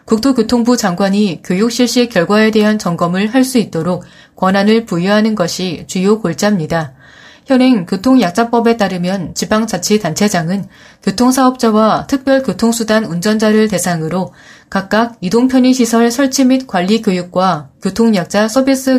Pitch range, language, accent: 185-235 Hz, Korean, native